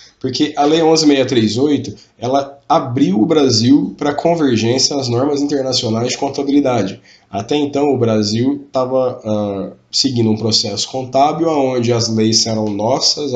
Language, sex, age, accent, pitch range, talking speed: Portuguese, male, 20-39, Brazilian, 110-140 Hz, 135 wpm